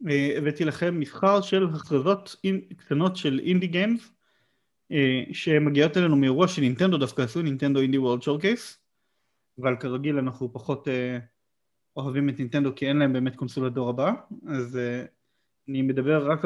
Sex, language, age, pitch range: male, Hebrew, 30-49, 130-170 Hz